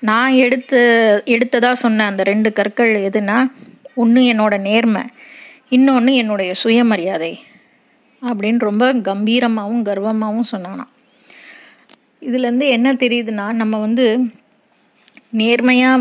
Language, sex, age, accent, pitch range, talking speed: Tamil, female, 20-39, native, 210-245 Hz, 100 wpm